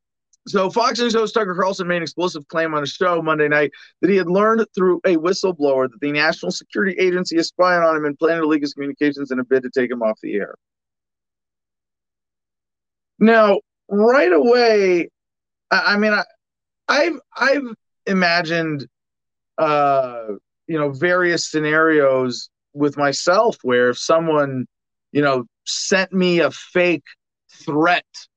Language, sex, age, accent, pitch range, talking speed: English, male, 40-59, American, 140-190 Hz, 155 wpm